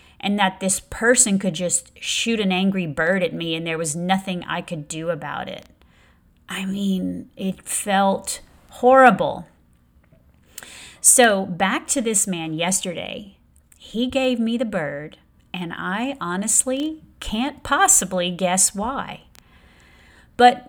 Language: English